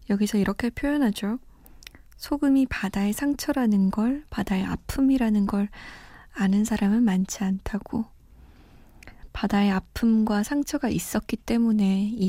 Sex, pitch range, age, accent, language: female, 195-250 Hz, 20-39, native, Korean